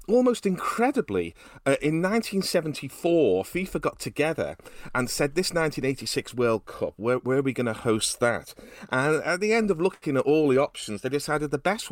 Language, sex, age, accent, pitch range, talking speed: English, male, 40-59, British, 100-160 Hz, 180 wpm